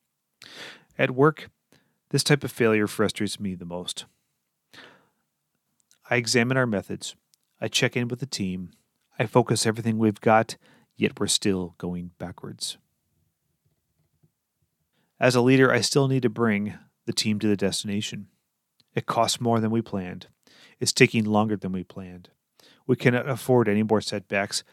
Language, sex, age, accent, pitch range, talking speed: English, male, 30-49, American, 100-120 Hz, 150 wpm